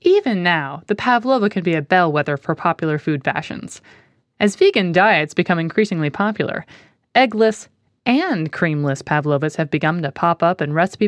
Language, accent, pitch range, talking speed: English, American, 150-225 Hz, 155 wpm